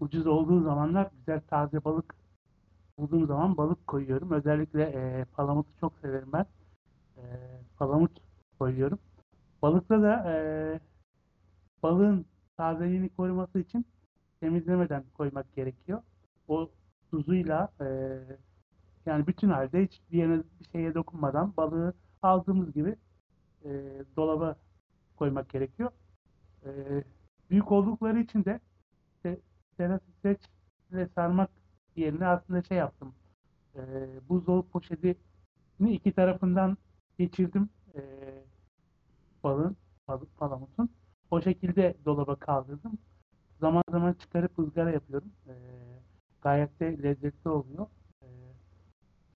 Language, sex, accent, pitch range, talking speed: Turkish, male, native, 130-175 Hz, 105 wpm